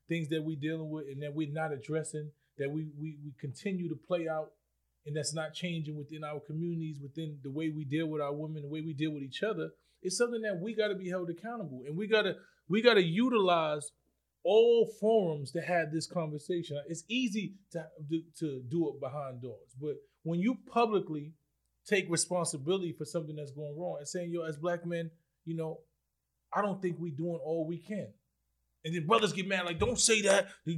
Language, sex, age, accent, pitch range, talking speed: English, male, 20-39, American, 155-200 Hz, 210 wpm